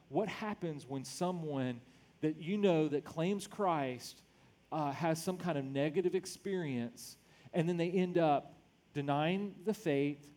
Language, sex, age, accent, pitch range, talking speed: English, male, 40-59, American, 150-190 Hz, 145 wpm